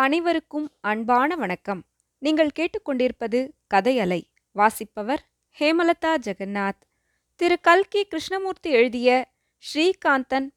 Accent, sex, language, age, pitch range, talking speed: native, female, Tamil, 20-39, 220-320 Hz, 80 wpm